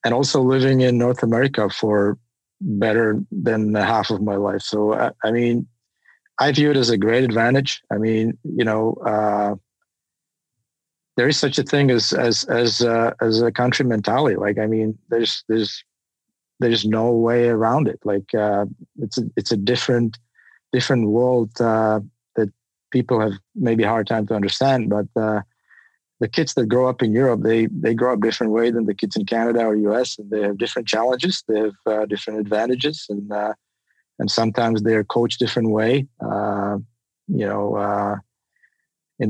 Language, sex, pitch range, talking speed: English, male, 105-120 Hz, 180 wpm